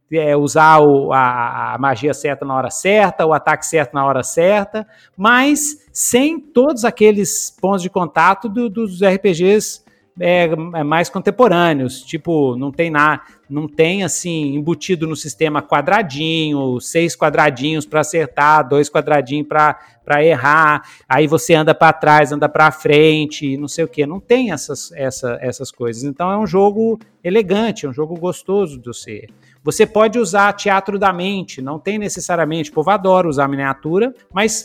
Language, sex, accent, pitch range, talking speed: Portuguese, male, Brazilian, 150-210 Hz, 160 wpm